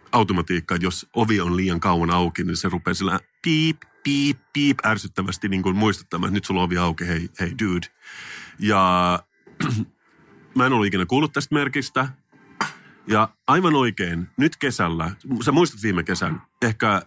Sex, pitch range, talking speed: male, 90-115 Hz, 150 wpm